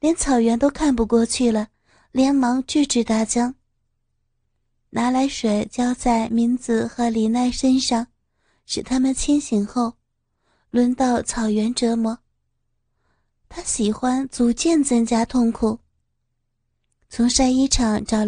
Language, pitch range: Chinese, 230-260 Hz